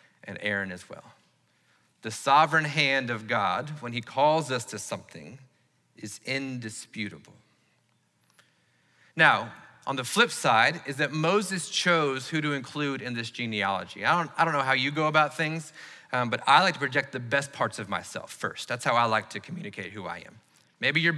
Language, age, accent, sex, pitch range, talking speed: English, 30-49, American, male, 135-175 Hz, 180 wpm